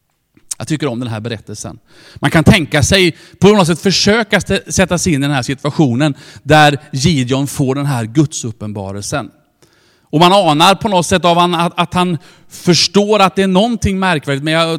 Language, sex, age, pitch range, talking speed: Swedish, male, 40-59, 135-195 Hz, 185 wpm